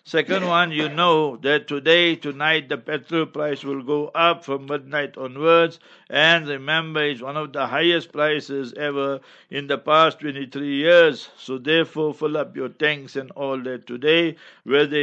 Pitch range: 135-155 Hz